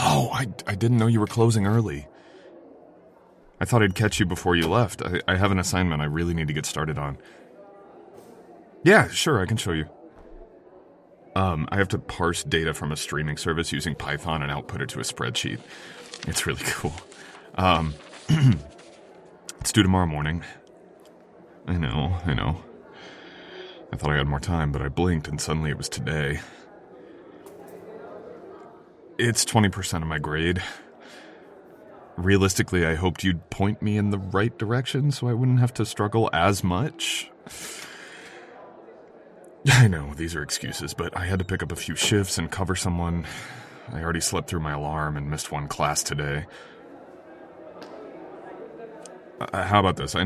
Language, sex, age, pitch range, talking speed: English, male, 30-49, 75-105 Hz, 160 wpm